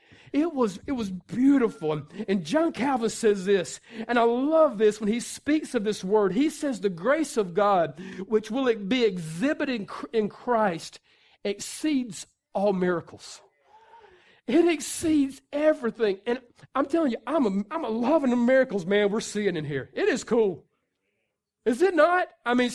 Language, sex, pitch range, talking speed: English, male, 220-295 Hz, 170 wpm